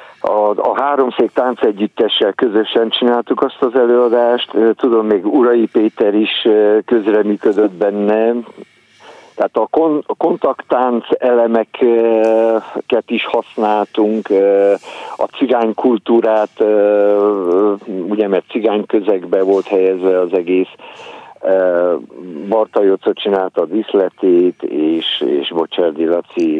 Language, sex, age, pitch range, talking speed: Hungarian, male, 50-69, 100-120 Hz, 90 wpm